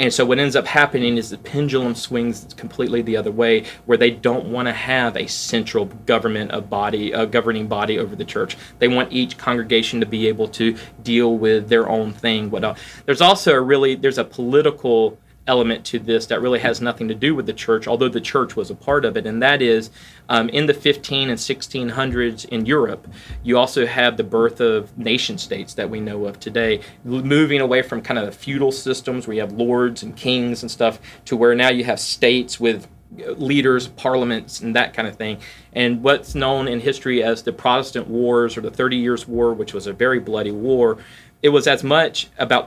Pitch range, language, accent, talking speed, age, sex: 115-130 Hz, English, American, 215 wpm, 30-49, male